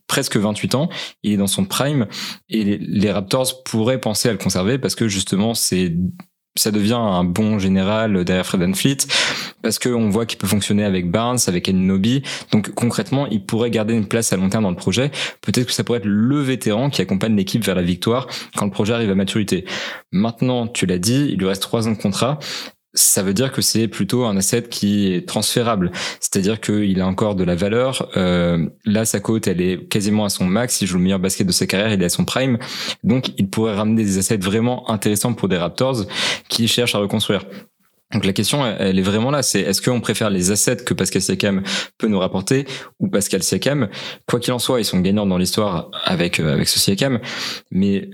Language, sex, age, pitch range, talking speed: French, male, 20-39, 100-120 Hz, 220 wpm